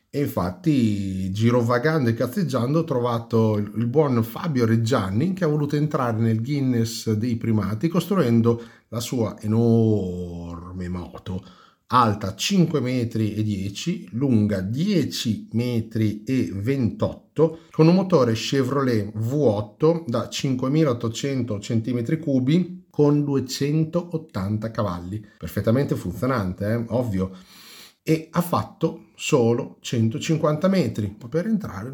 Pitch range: 105-150 Hz